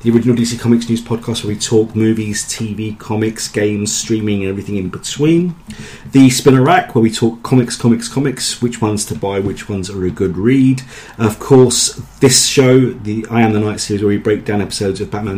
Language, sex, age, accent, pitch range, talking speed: English, male, 30-49, British, 105-130 Hz, 210 wpm